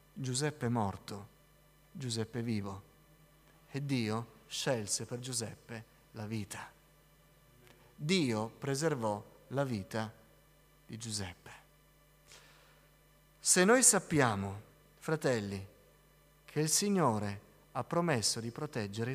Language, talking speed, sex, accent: Italian, 90 wpm, male, native